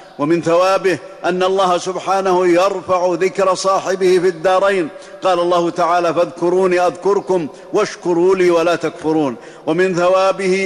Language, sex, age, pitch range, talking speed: Arabic, male, 50-69, 170-190 Hz, 120 wpm